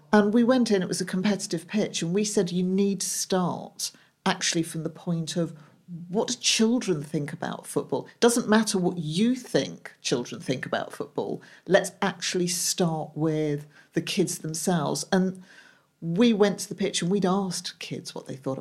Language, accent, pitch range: English, British, 160-190 Hz